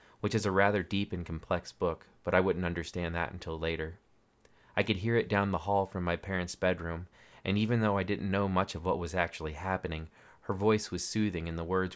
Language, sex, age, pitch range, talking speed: English, male, 30-49, 85-100 Hz, 225 wpm